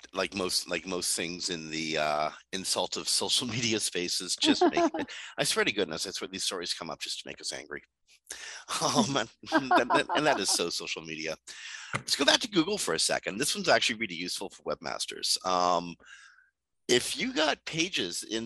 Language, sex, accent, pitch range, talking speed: English, male, American, 90-130 Hz, 200 wpm